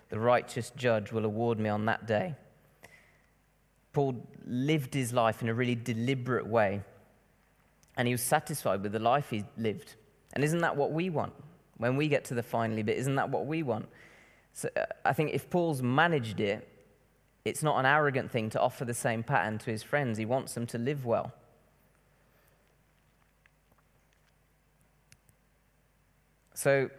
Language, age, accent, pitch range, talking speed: English, 20-39, British, 105-135 Hz, 160 wpm